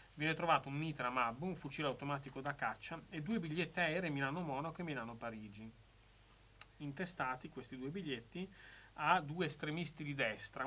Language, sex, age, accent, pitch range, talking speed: Italian, male, 30-49, native, 115-150 Hz, 155 wpm